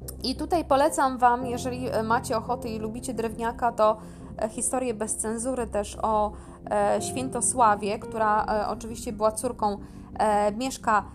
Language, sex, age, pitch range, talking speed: Polish, female, 20-39, 205-250 Hz, 120 wpm